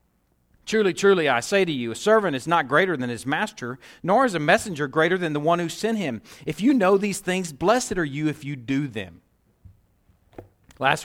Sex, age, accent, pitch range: male, 40-59, American, 135-210 Hz